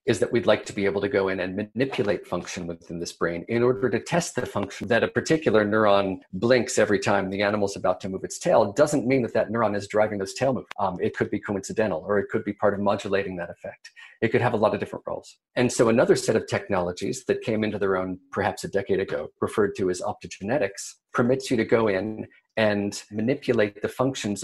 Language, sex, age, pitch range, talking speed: English, male, 40-59, 95-120 Hz, 235 wpm